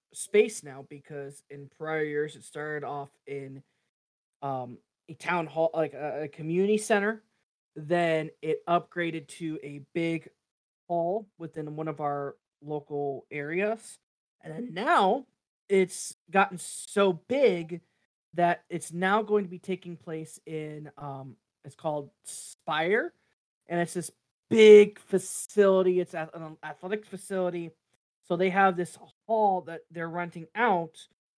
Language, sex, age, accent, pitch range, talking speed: English, male, 20-39, American, 150-190 Hz, 130 wpm